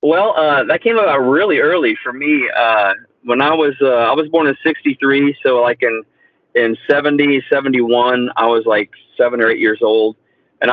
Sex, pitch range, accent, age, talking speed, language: male, 115-135 Hz, American, 40-59, 190 wpm, English